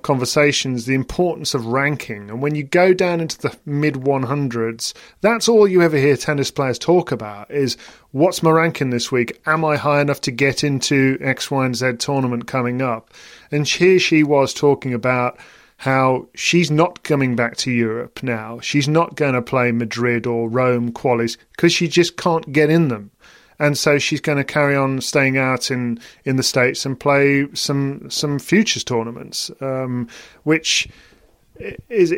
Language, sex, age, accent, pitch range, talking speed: English, male, 40-59, British, 125-150 Hz, 175 wpm